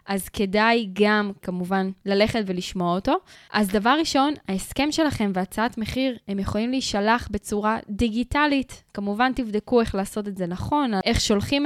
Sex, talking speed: female, 145 wpm